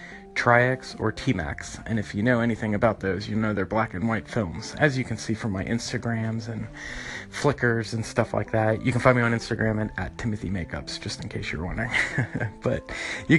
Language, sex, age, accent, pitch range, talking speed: English, male, 30-49, American, 105-120 Hz, 205 wpm